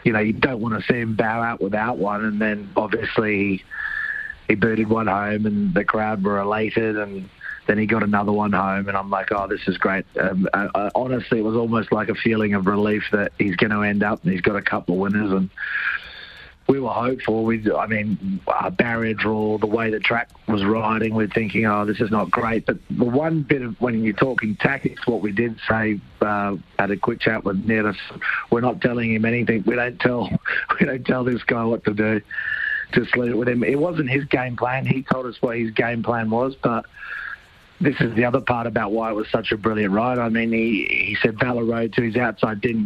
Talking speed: 230 wpm